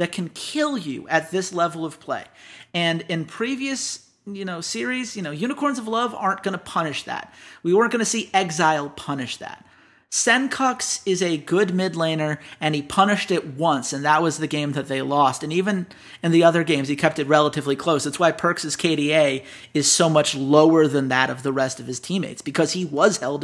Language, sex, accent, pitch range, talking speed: English, male, American, 145-185 Hz, 210 wpm